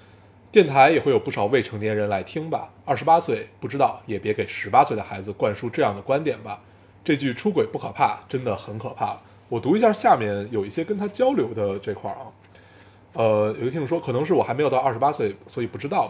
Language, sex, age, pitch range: Chinese, male, 20-39, 100-160 Hz